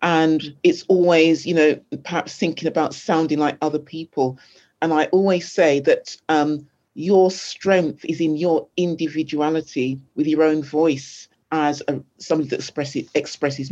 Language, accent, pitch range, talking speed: English, British, 145-175 Hz, 140 wpm